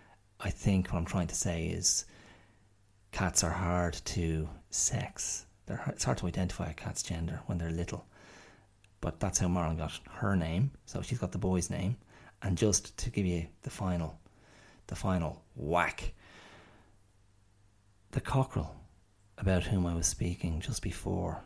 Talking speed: 150 wpm